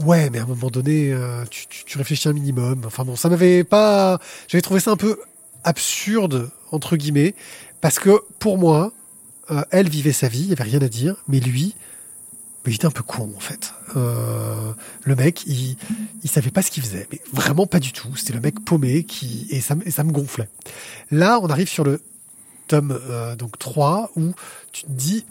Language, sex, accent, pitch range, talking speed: French, male, French, 130-170 Hz, 215 wpm